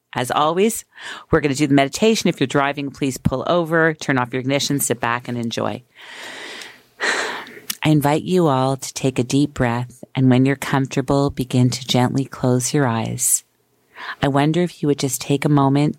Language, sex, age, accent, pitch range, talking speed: English, female, 40-59, American, 130-155 Hz, 190 wpm